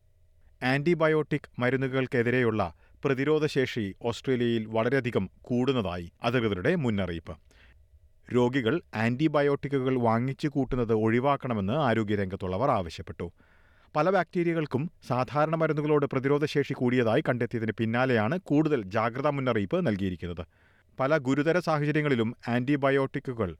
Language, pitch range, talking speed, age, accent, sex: Malayalam, 100-145 Hz, 80 wpm, 40-59, native, male